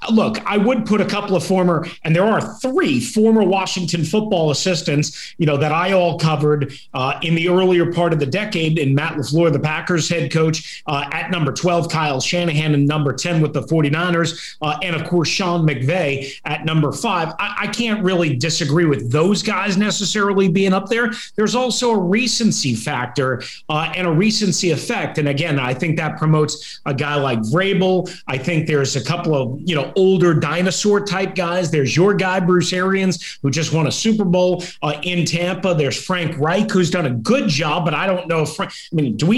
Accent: American